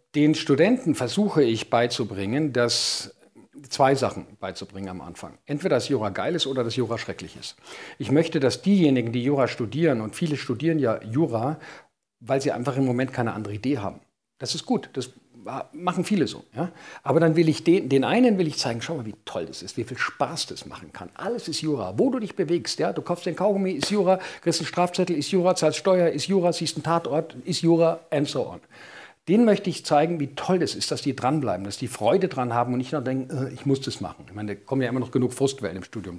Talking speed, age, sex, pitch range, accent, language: 230 wpm, 50-69, male, 125-170 Hz, German, German